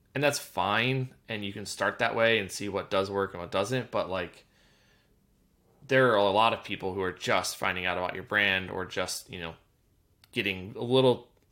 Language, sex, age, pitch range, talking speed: English, male, 20-39, 95-120 Hz, 210 wpm